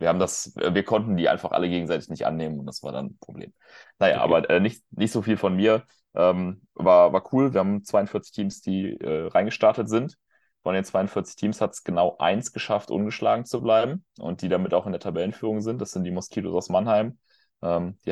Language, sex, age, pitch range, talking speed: German, male, 30-49, 90-105 Hz, 220 wpm